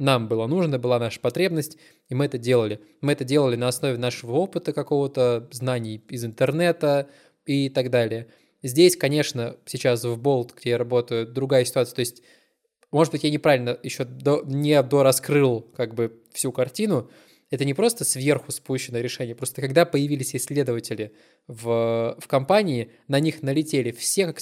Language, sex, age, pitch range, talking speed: Russian, male, 20-39, 120-145 Hz, 160 wpm